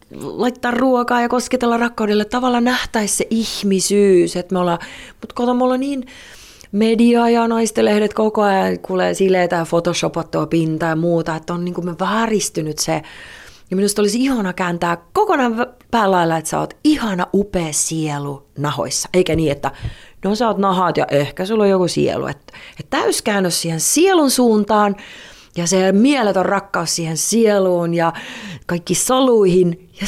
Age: 30-49